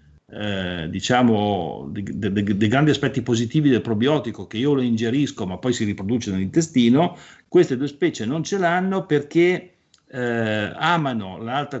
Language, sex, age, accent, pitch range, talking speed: Italian, male, 50-69, native, 110-160 Hz, 135 wpm